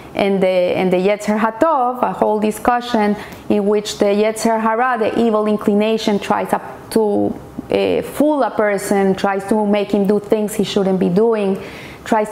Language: English